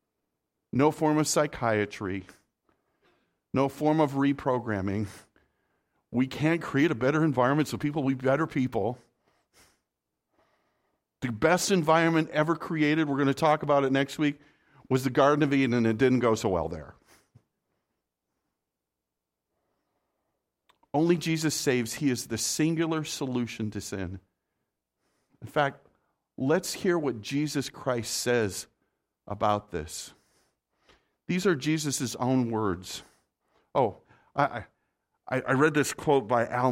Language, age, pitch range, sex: English, 50-69, 110-150 Hz, male